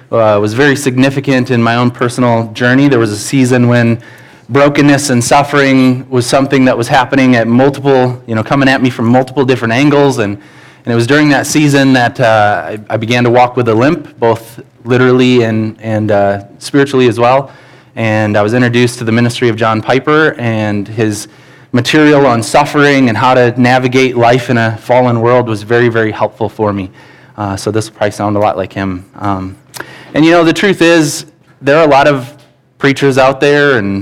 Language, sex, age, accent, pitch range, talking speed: English, male, 20-39, American, 110-135 Hz, 200 wpm